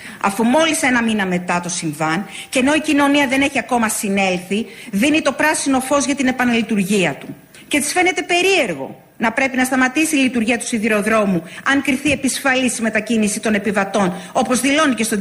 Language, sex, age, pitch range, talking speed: Greek, female, 40-59, 190-280 Hz, 180 wpm